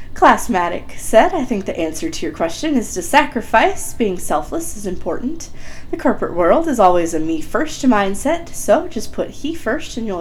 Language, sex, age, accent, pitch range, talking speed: English, female, 30-49, American, 175-275 Hz, 180 wpm